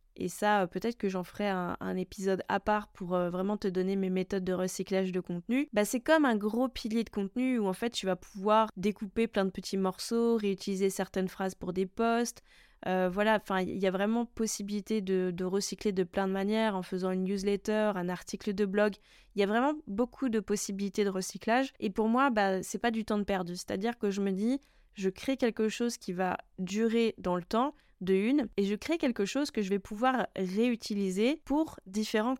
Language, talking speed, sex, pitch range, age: French, 220 wpm, female, 195-230 Hz, 20-39